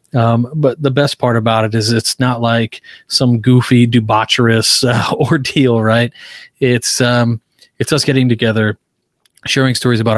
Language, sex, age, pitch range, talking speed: English, male, 30-49, 110-125 Hz, 155 wpm